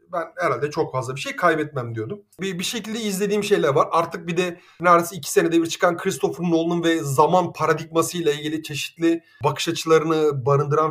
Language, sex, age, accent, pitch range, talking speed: Turkish, male, 30-49, native, 155-215 Hz, 175 wpm